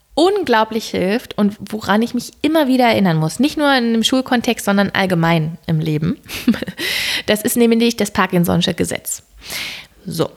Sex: female